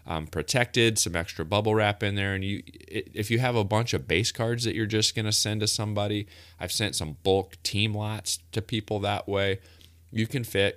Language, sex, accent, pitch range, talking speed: English, male, American, 85-105 Hz, 215 wpm